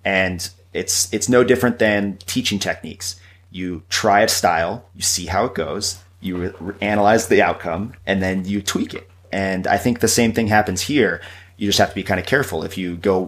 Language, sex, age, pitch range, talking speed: English, male, 30-49, 90-100 Hz, 205 wpm